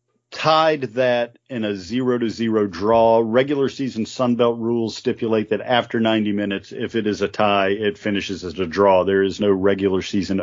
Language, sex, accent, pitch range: English, male, American, 100-125 Hz